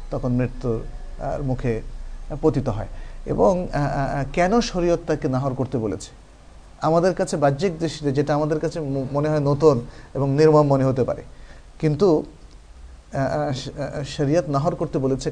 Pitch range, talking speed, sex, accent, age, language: 130-165 Hz, 125 wpm, male, native, 50-69, Bengali